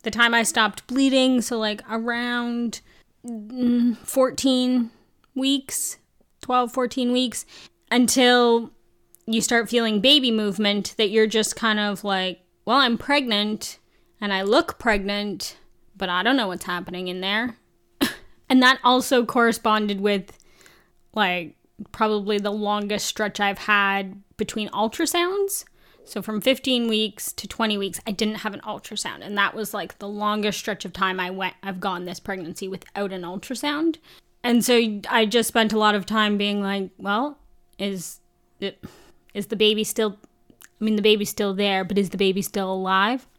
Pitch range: 195-240 Hz